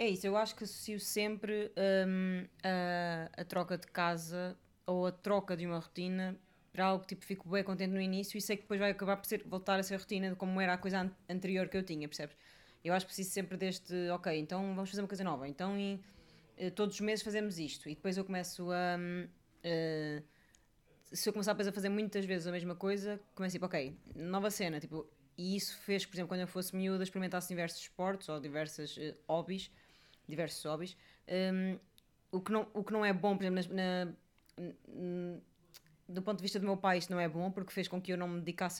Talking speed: 215 wpm